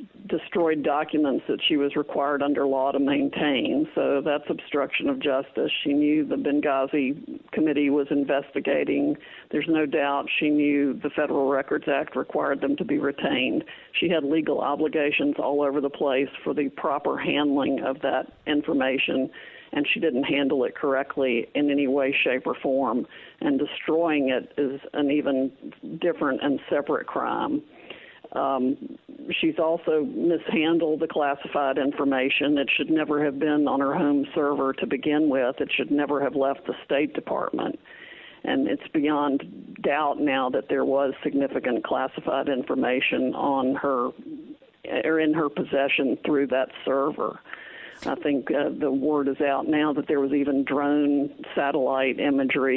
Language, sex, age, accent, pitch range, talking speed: English, female, 50-69, American, 140-160 Hz, 155 wpm